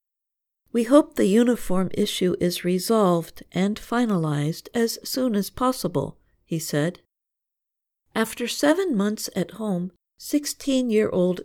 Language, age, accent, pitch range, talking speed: English, 50-69, American, 170-225 Hz, 110 wpm